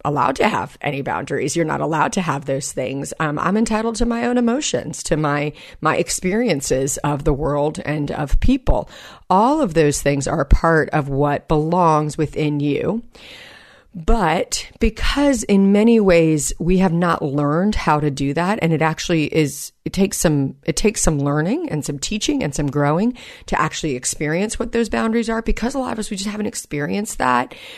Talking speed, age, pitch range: 185 wpm, 40-59, 145-195 Hz